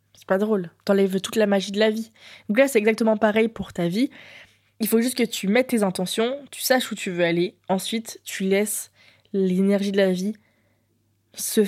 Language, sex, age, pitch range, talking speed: French, female, 20-39, 195-230 Hz, 200 wpm